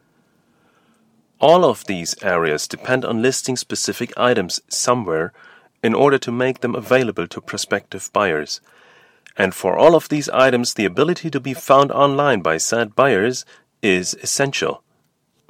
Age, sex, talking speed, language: 30-49, male, 140 wpm, English